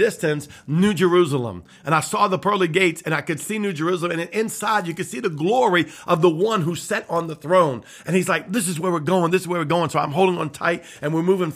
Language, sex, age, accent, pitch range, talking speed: English, male, 50-69, American, 145-185 Hz, 270 wpm